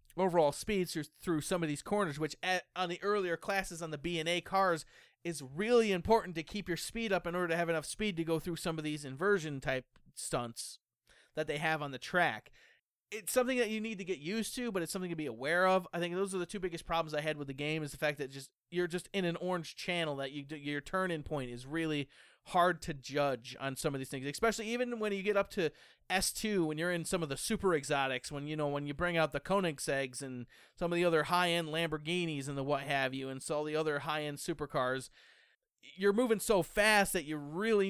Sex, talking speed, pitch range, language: male, 245 wpm, 145-185 Hz, English